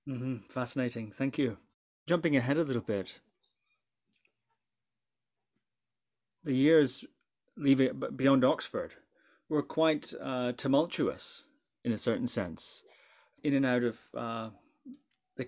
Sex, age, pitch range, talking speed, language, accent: male, 30-49, 120-145 Hz, 105 wpm, English, British